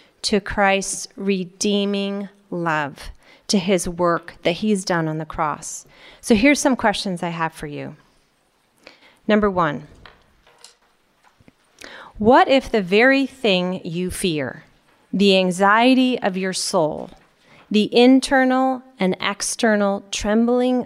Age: 30-49